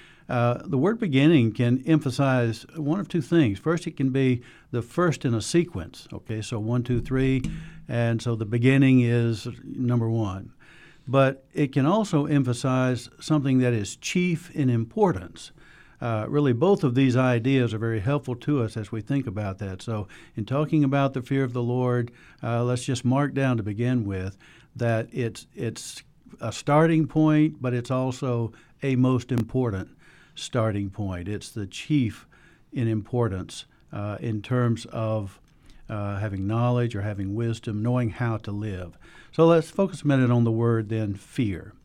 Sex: male